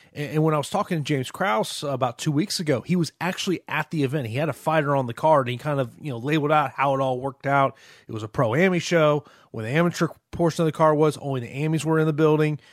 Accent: American